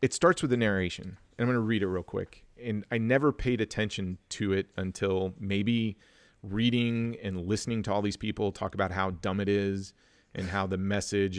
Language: English